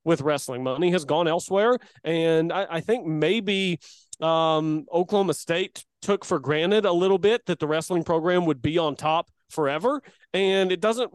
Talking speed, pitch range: 170 wpm, 170-205 Hz